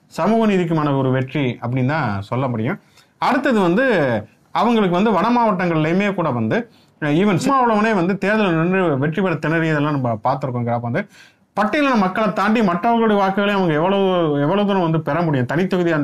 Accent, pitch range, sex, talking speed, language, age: native, 130-205 Hz, male, 145 wpm, Tamil, 30-49